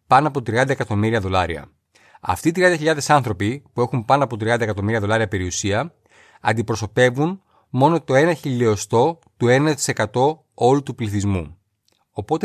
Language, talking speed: Greek, 135 wpm